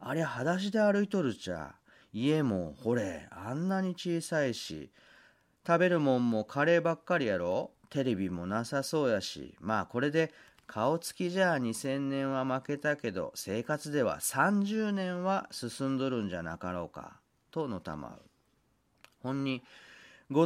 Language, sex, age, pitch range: Japanese, male, 40-59, 100-160 Hz